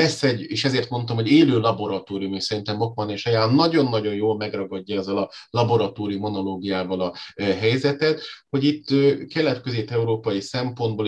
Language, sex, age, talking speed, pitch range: Hungarian, male, 30-49, 140 wpm, 95-120 Hz